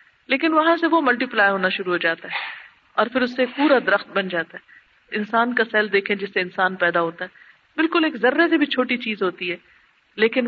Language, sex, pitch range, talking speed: Urdu, female, 200-300 Hz, 235 wpm